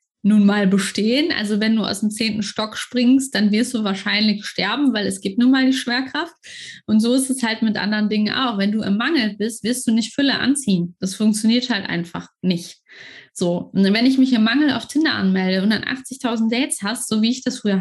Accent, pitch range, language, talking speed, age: German, 200-250 Hz, German, 225 wpm, 20-39